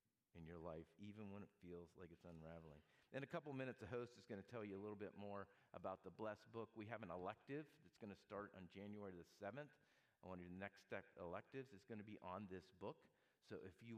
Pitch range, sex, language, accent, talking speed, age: 95-120 Hz, male, English, American, 245 wpm, 40-59